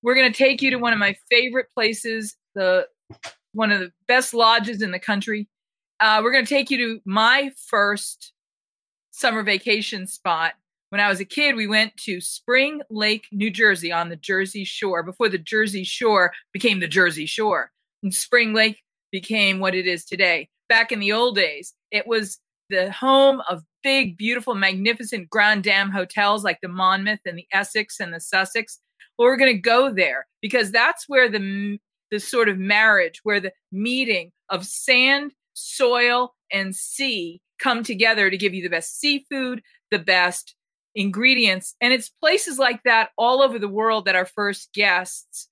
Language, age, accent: English, 40-59, American